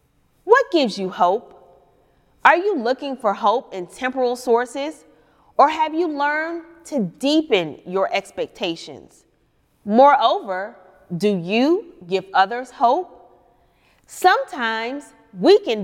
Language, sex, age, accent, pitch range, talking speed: English, female, 30-49, American, 195-290 Hz, 110 wpm